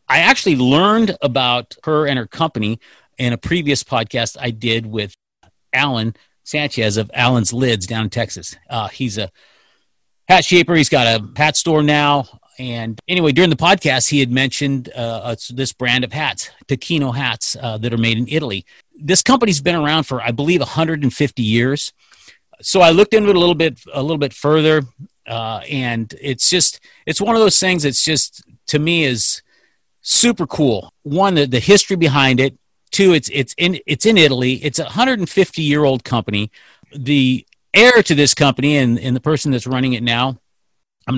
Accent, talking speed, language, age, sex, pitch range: American, 180 wpm, English, 40-59, male, 120-160 Hz